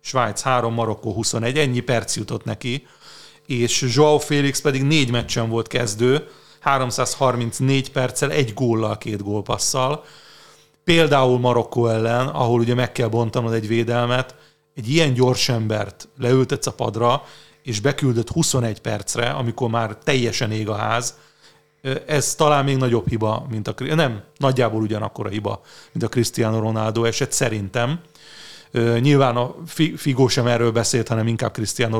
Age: 30-49